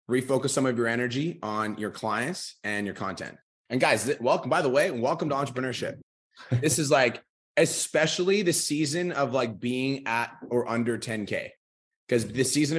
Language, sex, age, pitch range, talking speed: English, male, 30-49, 105-130 Hz, 170 wpm